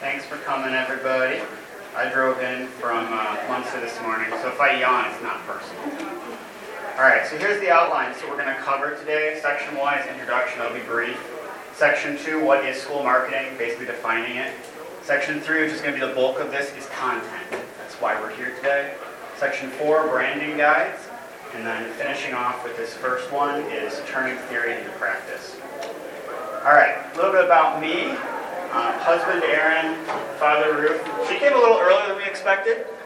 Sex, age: male, 30-49